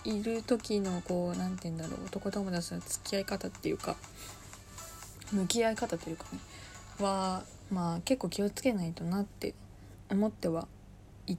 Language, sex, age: Japanese, female, 20-39